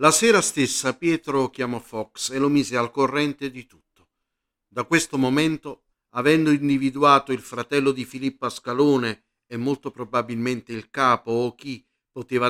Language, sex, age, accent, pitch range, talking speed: Italian, male, 50-69, native, 120-145 Hz, 150 wpm